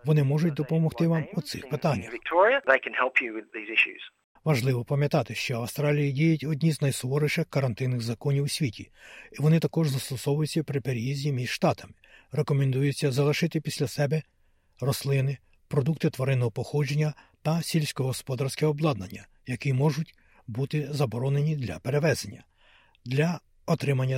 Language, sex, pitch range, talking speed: Ukrainian, male, 125-155 Hz, 115 wpm